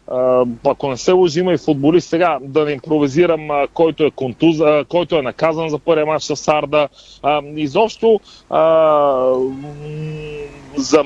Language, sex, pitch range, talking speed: Bulgarian, male, 140-165 Hz, 140 wpm